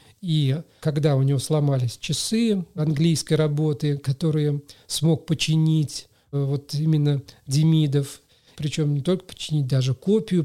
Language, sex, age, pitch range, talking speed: Russian, male, 40-59, 140-165 Hz, 115 wpm